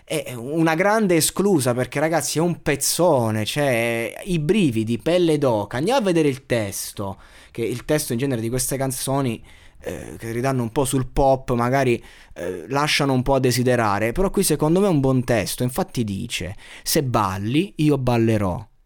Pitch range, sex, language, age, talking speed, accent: 110-150 Hz, male, Italian, 20-39, 180 wpm, native